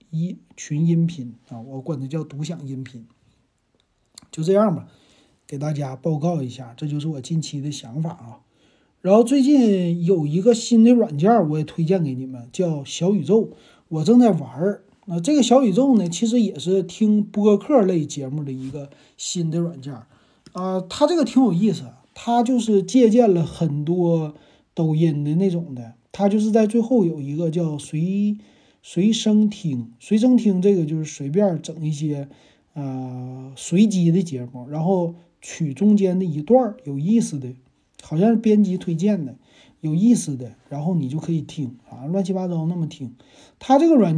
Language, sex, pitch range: Chinese, male, 145-210 Hz